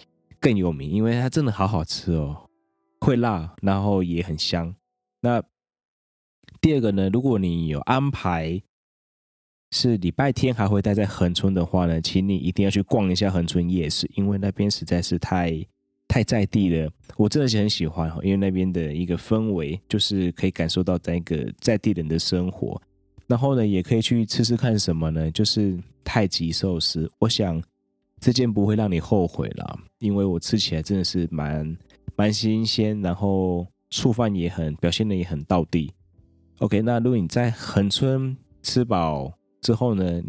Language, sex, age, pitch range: Chinese, male, 20-39, 85-110 Hz